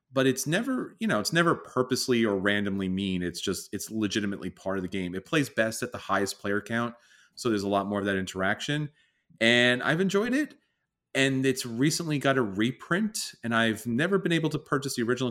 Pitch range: 105-135 Hz